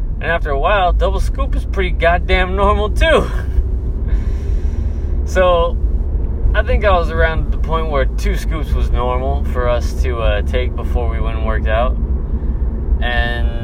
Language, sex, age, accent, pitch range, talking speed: English, male, 20-39, American, 70-85 Hz, 160 wpm